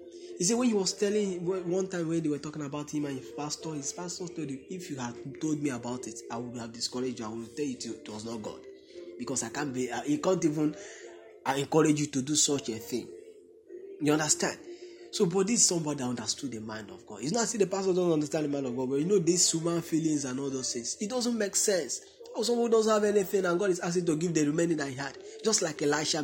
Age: 20-39